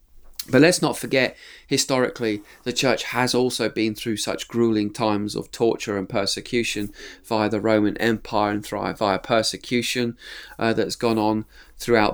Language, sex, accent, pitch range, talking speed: English, male, British, 105-130 Hz, 155 wpm